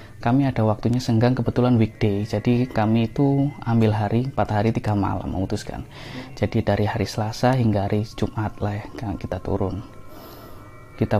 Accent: native